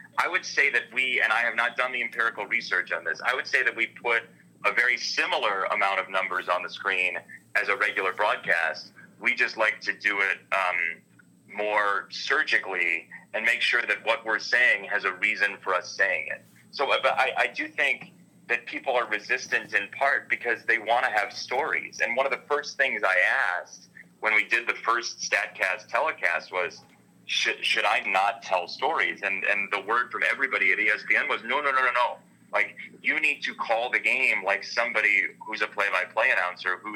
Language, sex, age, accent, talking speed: English, male, 30-49, American, 200 wpm